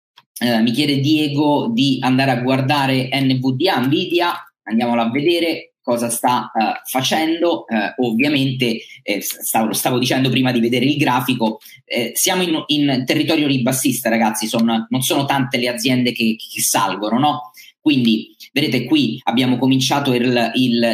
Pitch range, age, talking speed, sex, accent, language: 115-140 Hz, 20-39, 150 wpm, male, native, Italian